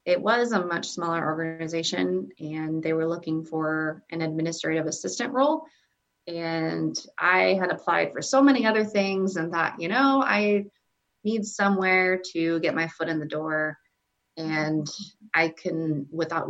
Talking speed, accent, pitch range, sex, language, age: 155 wpm, American, 150-180 Hz, female, English, 30-49